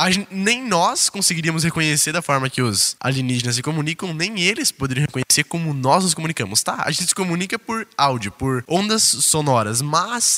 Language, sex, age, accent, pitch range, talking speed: Portuguese, male, 10-29, Brazilian, 135-185 Hz, 185 wpm